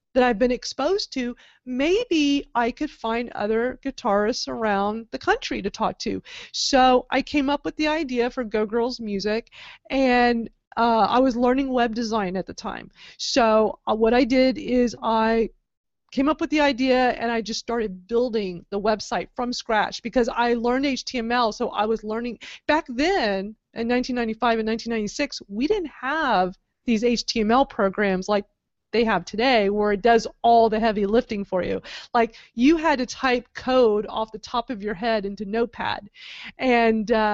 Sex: female